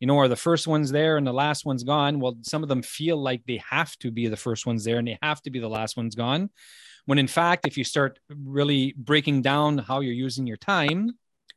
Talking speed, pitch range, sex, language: 255 wpm, 120-150 Hz, male, English